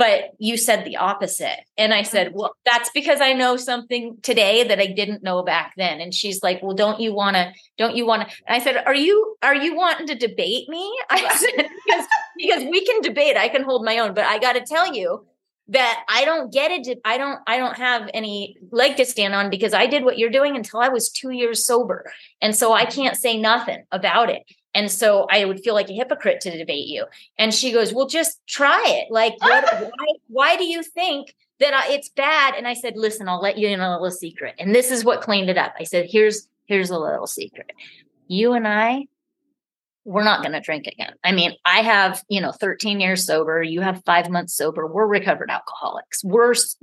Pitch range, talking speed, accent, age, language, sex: 200-275 Hz, 225 wpm, American, 30-49, English, female